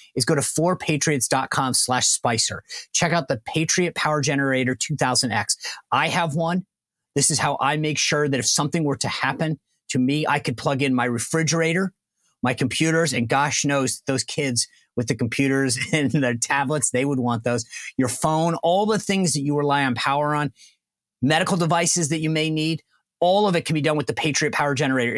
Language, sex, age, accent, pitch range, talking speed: English, male, 30-49, American, 130-160 Hz, 195 wpm